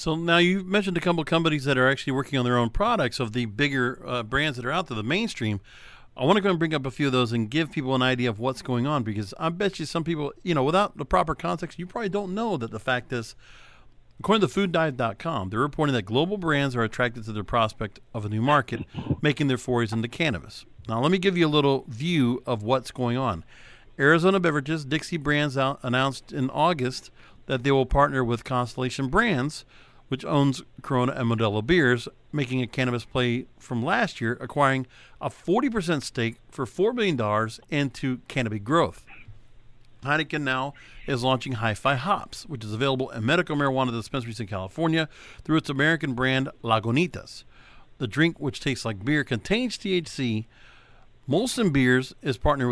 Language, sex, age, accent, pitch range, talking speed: English, male, 50-69, American, 120-155 Hz, 195 wpm